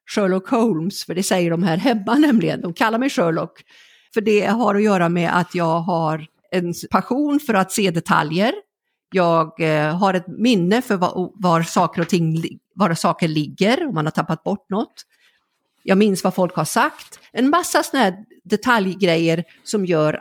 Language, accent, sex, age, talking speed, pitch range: Swedish, native, female, 50-69, 170 wpm, 175-235 Hz